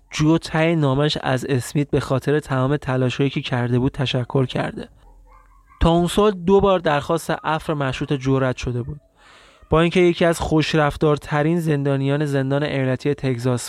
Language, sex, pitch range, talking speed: Persian, male, 135-175 Hz, 150 wpm